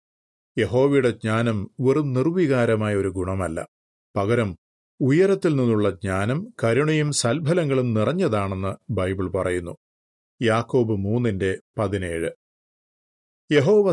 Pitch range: 100-135 Hz